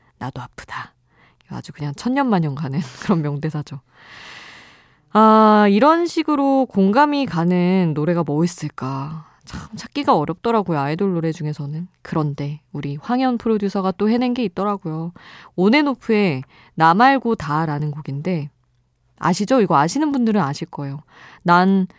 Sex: female